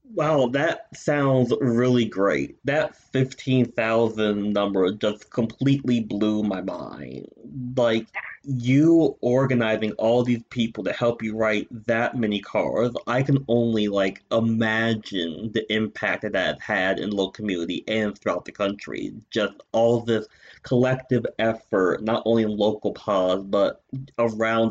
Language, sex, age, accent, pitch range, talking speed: English, male, 30-49, American, 105-125 Hz, 135 wpm